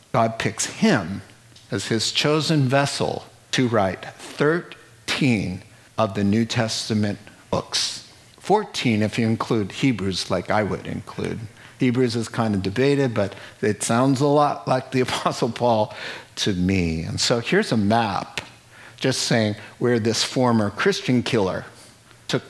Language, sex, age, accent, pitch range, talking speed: English, male, 50-69, American, 100-125 Hz, 140 wpm